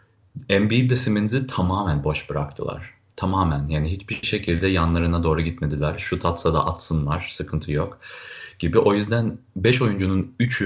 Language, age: Turkish, 30-49